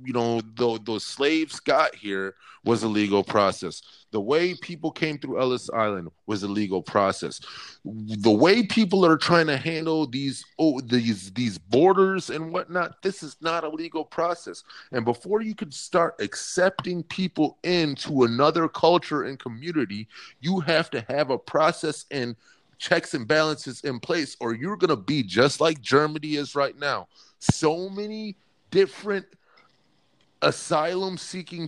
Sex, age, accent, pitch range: male, 30-49, American, 125-175 Hz